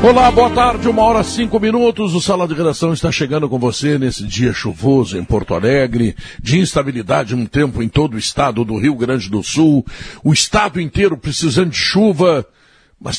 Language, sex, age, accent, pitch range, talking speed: Portuguese, male, 60-79, Brazilian, 130-185 Hz, 190 wpm